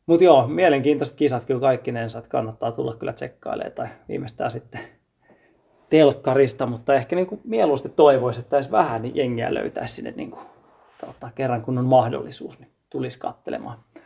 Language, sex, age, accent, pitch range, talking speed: Finnish, male, 30-49, native, 125-150 Hz, 150 wpm